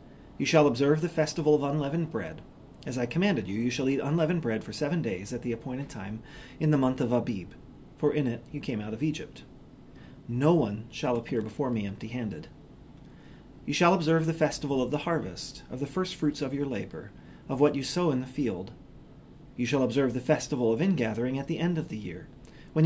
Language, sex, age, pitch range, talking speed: English, male, 40-59, 120-155 Hz, 205 wpm